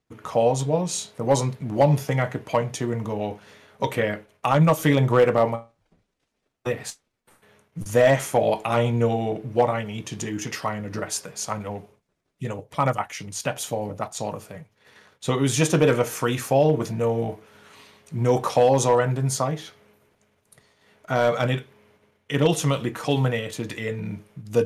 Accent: British